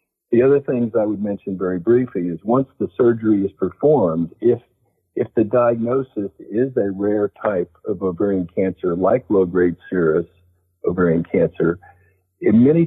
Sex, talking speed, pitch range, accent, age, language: male, 150 wpm, 90-110 Hz, American, 50-69, English